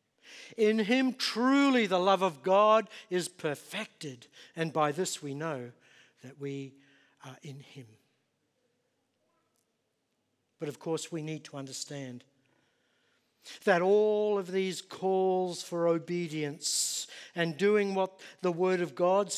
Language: English